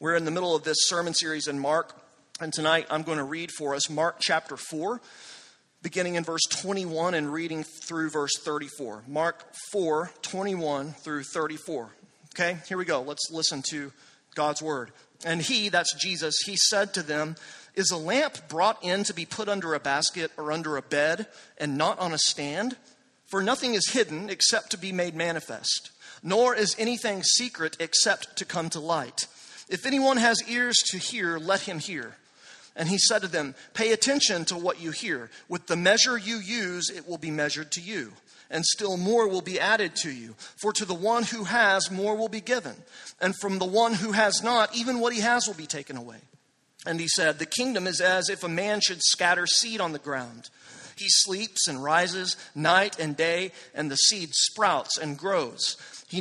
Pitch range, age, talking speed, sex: 155-205 Hz, 40-59, 195 wpm, male